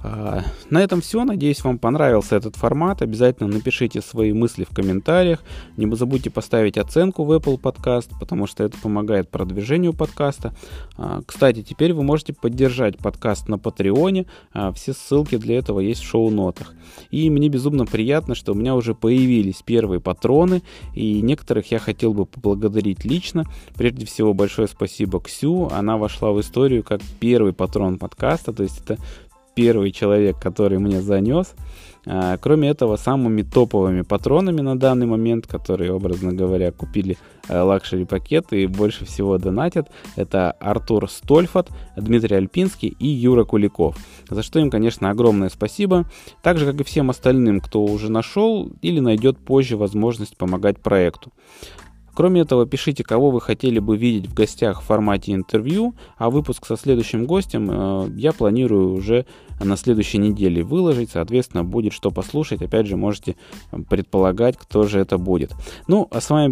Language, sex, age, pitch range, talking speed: Russian, male, 20-39, 100-130 Hz, 155 wpm